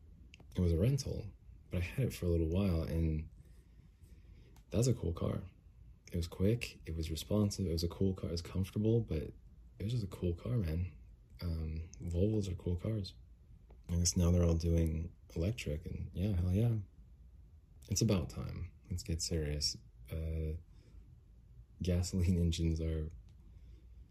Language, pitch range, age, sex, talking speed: English, 80-100 Hz, 20-39, male, 160 wpm